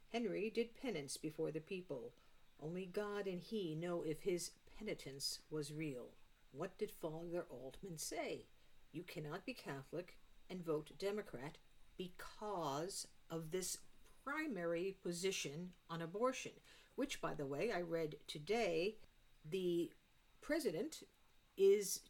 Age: 50-69